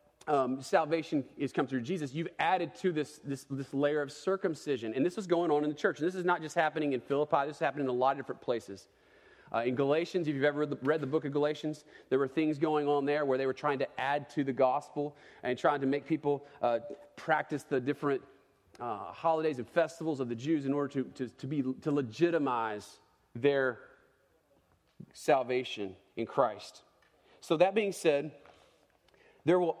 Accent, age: American, 30-49